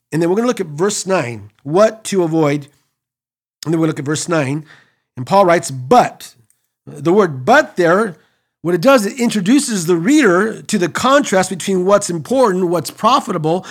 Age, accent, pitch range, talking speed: 50-69, American, 150-205 Hz, 185 wpm